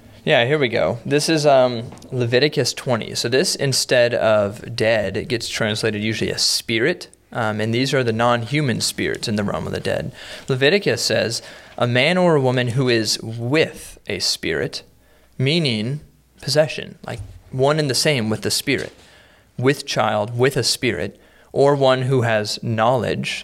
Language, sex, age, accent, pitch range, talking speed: English, male, 20-39, American, 110-130 Hz, 165 wpm